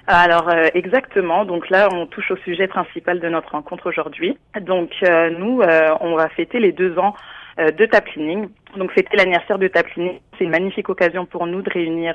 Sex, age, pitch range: female, 20-39, 165-190 Hz